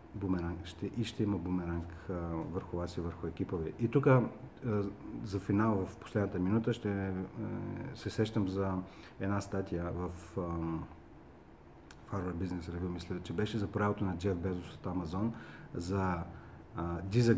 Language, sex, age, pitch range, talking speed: Bulgarian, male, 40-59, 90-110 Hz, 140 wpm